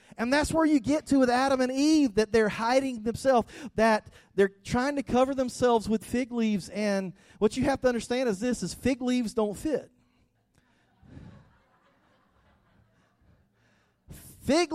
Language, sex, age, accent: English, male, 40-59, American